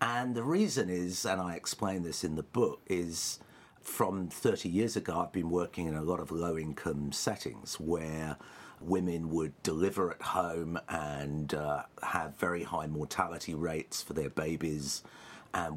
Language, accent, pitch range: English, British, 80-95 Hz